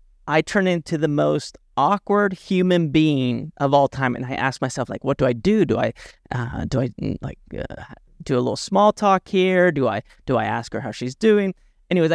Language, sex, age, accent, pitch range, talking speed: English, male, 30-49, American, 140-180 Hz, 210 wpm